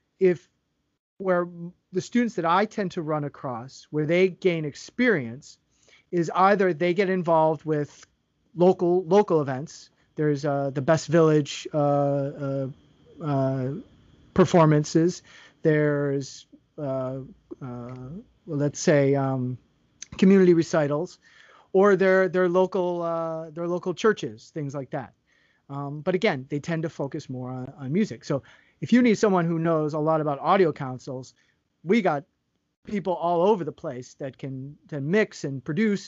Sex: male